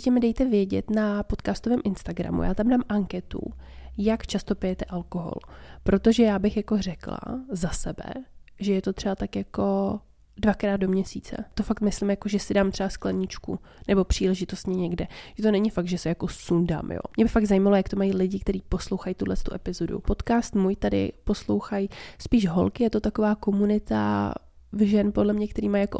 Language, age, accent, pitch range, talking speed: Czech, 20-39, native, 185-215 Hz, 185 wpm